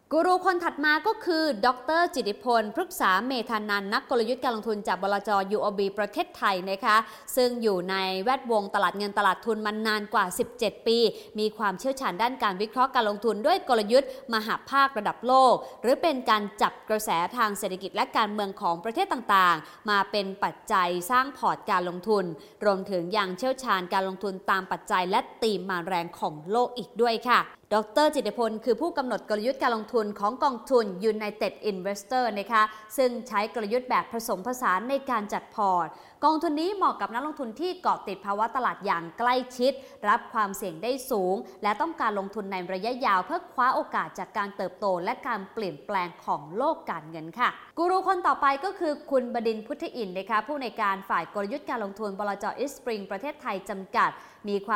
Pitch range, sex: 200-255 Hz, female